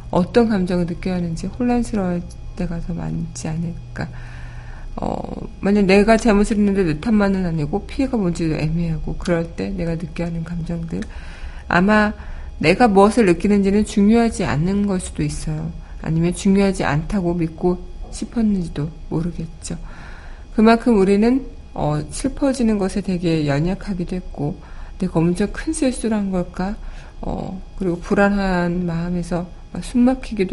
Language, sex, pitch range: Korean, female, 165-205 Hz